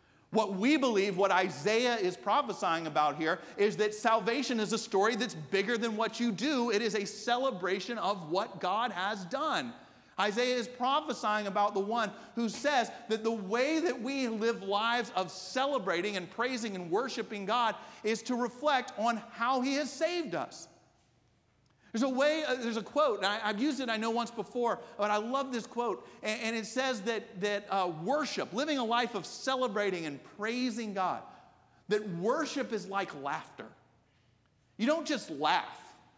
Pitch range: 195-245 Hz